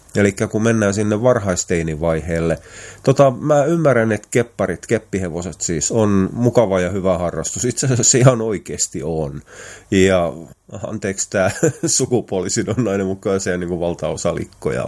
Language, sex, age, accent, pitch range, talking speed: Finnish, male, 30-49, native, 85-115 Hz, 135 wpm